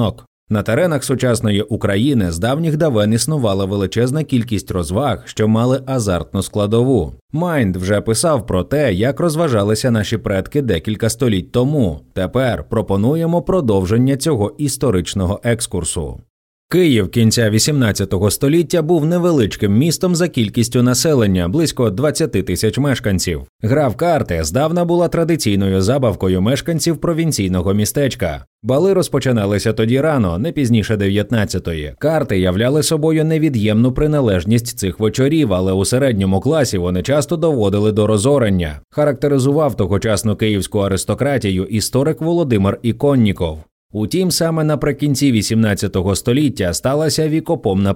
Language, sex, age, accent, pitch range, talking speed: Ukrainian, male, 30-49, native, 100-145 Hz, 120 wpm